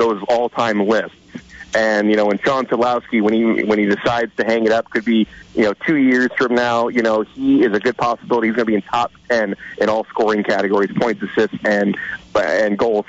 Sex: male